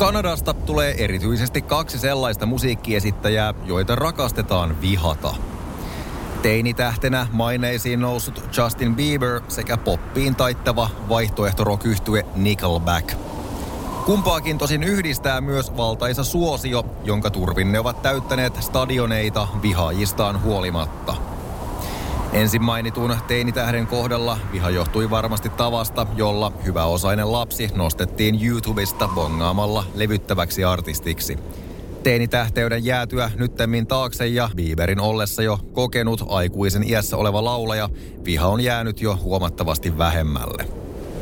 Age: 30-49